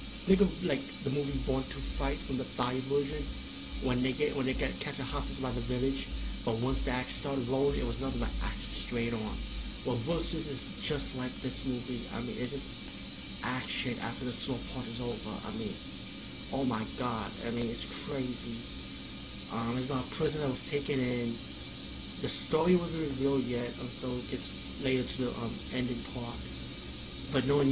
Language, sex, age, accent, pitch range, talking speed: English, male, 20-39, American, 115-135 Hz, 195 wpm